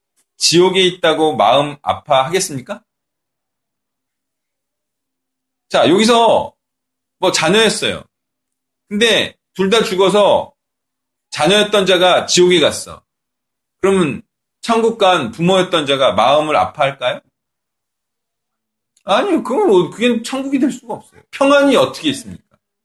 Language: Korean